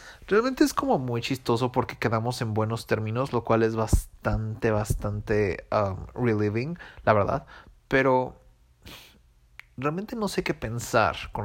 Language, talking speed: English, 135 wpm